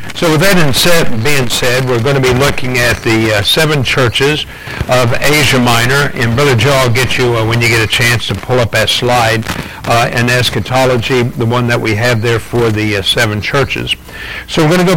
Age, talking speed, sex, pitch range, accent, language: 60-79, 215 wpm, male, 115-135 Hz, American, English